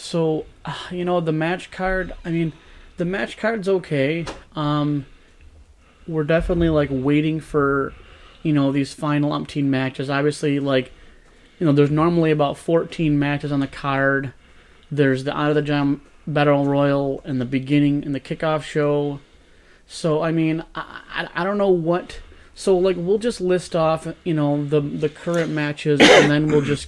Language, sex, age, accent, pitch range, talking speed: English, male, 30-49, American, 140-160 Hz, 170 wpm